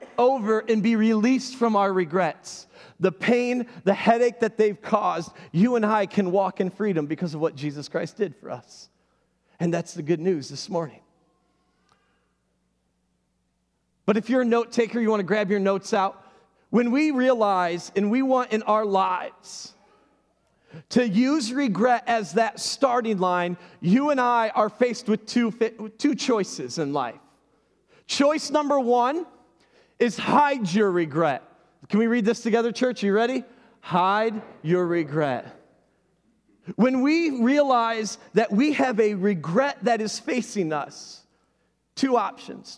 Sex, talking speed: male, 155 wpm